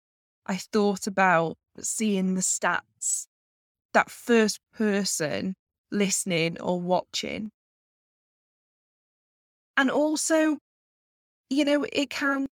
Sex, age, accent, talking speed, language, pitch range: female, 20-39, British, 85 wpm, English, 195-275 Hz